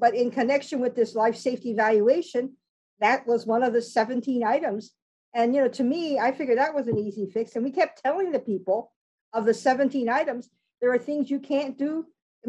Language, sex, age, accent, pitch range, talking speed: English, female, 50-69, American, 225-275 Hz, 210 wpm